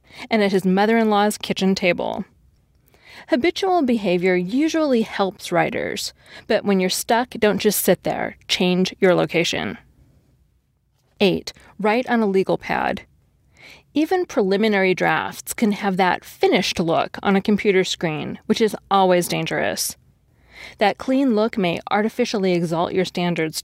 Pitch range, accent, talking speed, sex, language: 180-230 Hz, American, 130 wpm, female, English